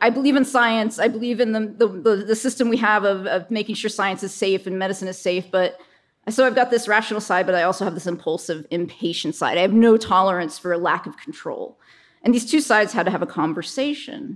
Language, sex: English, female